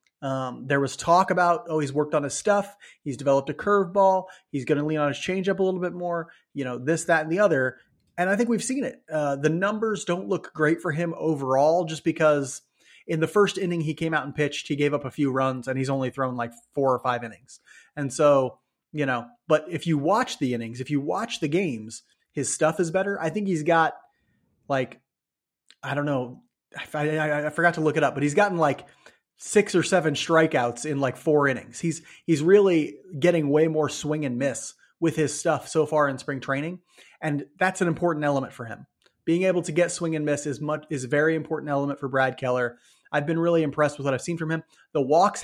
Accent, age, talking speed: American, 30-49, 230 wpm